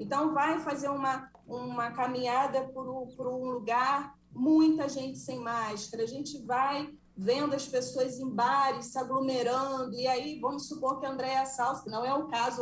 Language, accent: Portuguese, Brazilian